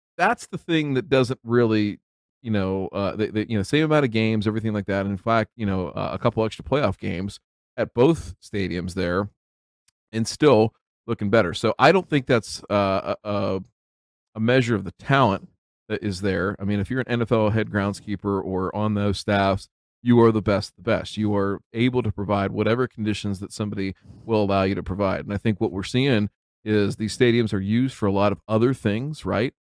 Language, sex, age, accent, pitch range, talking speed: English, male, 40-59, American, 100-115 Hz, 205 wpm